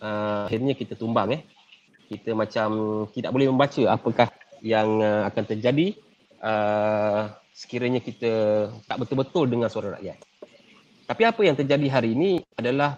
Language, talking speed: Malay, 140 wpm